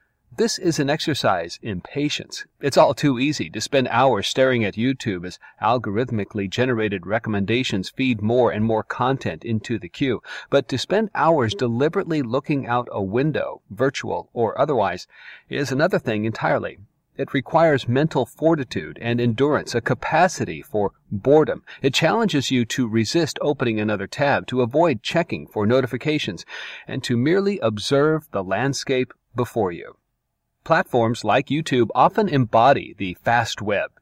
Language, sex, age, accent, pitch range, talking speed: English, male, 40-59, American, 110-150 Hz, 145 wpm